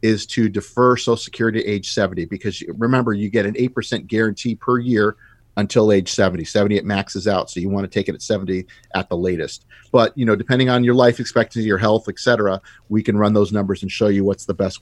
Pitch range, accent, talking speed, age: 100-120 Hz, American, 235 wpm, 40-59